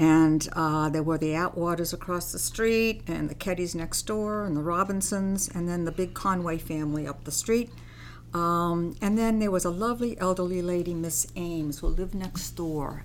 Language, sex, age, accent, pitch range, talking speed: English, female, 60-79, American, 155-180 Hz, 190 wpm